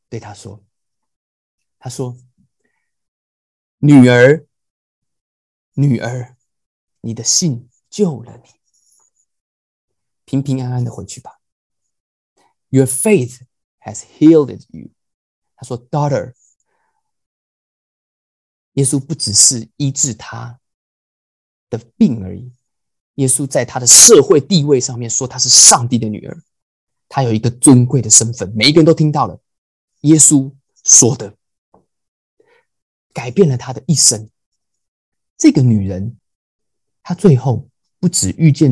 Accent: native